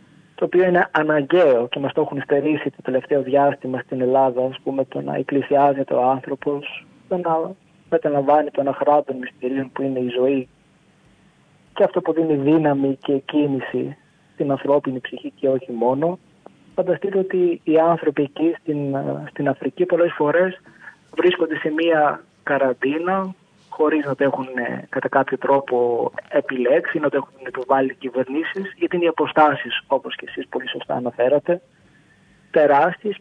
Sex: male